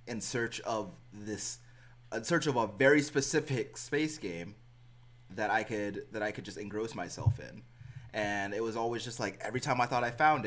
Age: 20-39